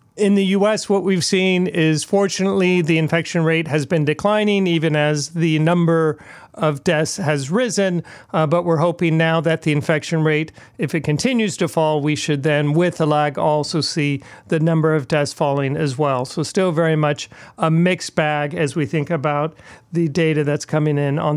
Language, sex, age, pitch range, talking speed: English, male, 40-59, 155-185 Hz, 190 wpm